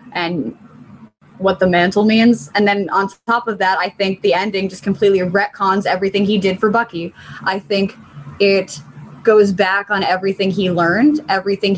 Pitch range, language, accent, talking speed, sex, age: 190-225 Hz, English, American, 170 wpm, female, 20-39